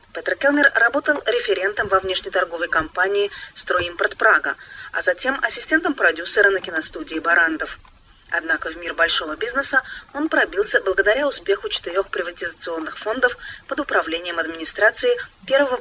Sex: female